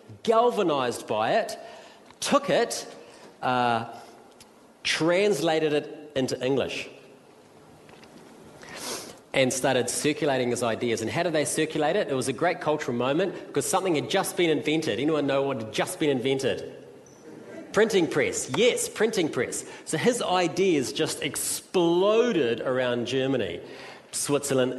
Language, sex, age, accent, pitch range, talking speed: English, male, 40-59, Australian, 120-160 Hz, 130 wpm